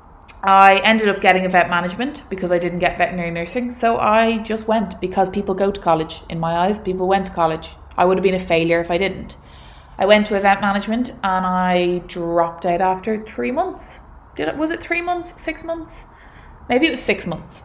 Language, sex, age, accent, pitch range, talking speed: English, female, 20-39, Irish, 170-210 Hz, 210 wpm